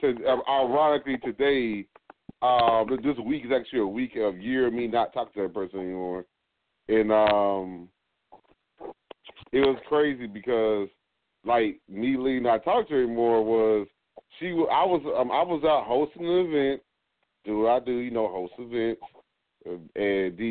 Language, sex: English, male